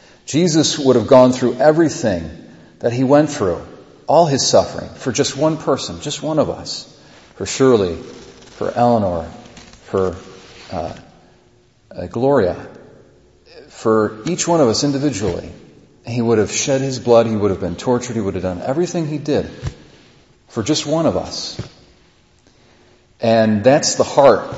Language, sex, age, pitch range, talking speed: English, male, 40-59, 105-145 Hz, 150 wpm